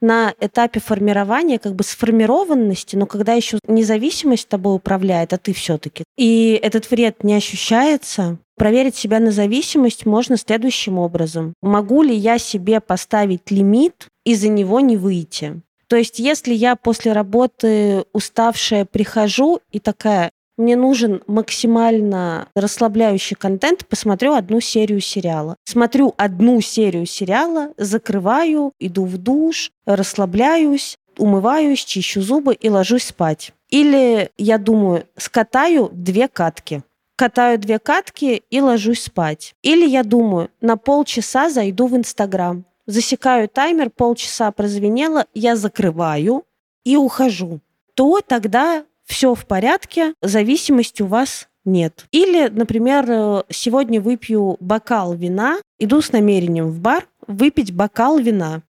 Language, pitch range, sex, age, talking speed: Russian, 200-255 Hz, female, 20-39, 125 wpm